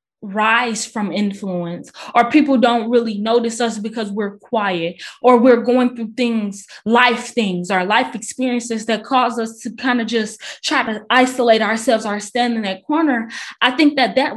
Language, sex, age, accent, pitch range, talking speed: English, female, 20-39, American, 220-280 Hz, 175 wpm